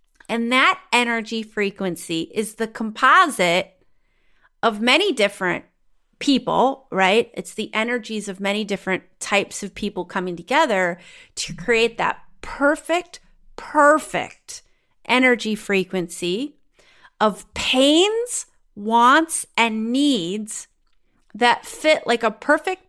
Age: 30-49